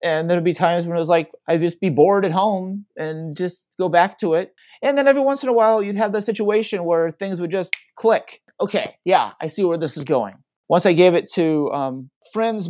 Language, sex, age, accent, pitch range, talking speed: English, male, 30-49, American, 150-185 Hz, 240 wpm